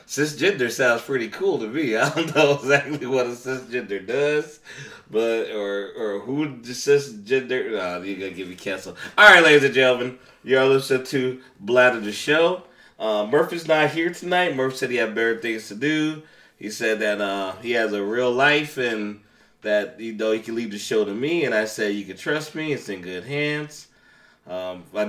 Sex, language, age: male, English, 30-49